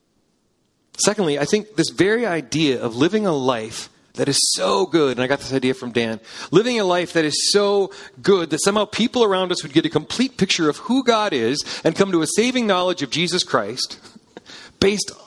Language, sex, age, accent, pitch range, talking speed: English, male, 40-59, American, 155-205 Hz, 205 wpm